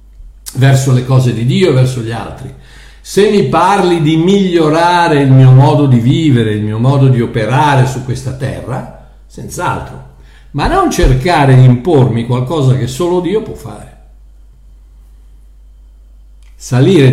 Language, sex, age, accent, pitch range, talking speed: Italian, male, 60-79, native, 110-140 Hz, 140 wpm